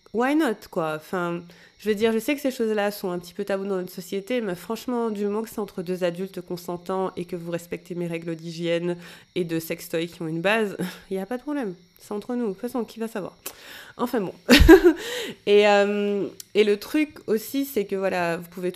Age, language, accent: 20-39, French, French